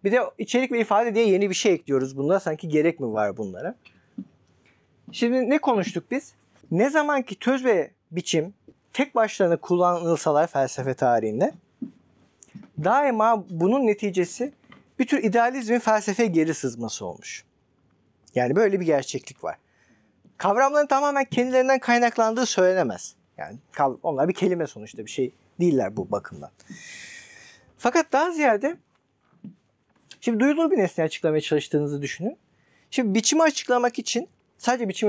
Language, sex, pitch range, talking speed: Turkish, male, 155-250 Hz, 130 wpm